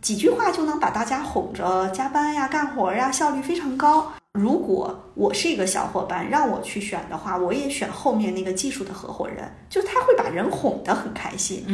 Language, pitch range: Chinese, 190-260 Hz